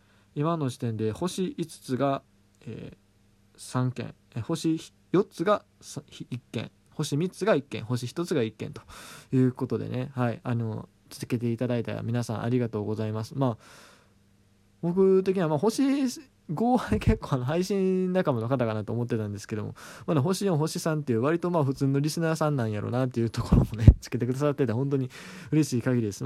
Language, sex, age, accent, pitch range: Japanese, male, 20-39, native, 110-160 Hz